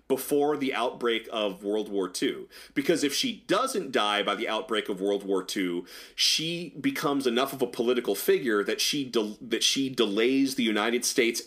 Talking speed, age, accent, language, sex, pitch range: 185 wpm, 30-49, American, English, male, 105-140 Hz